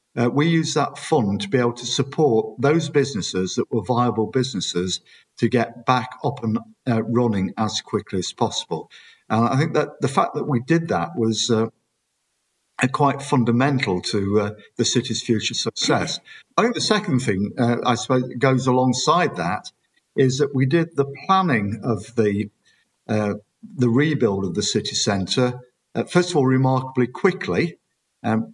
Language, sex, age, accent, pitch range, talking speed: English, male, 50-69, British, 115-135 Hz, 165 wpm